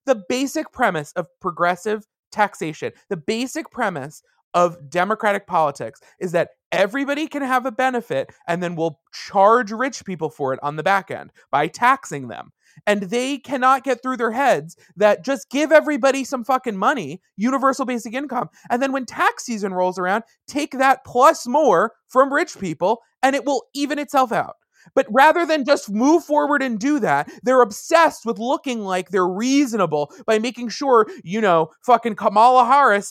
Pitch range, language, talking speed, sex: 200-275 Hz, English, 175 wpm, male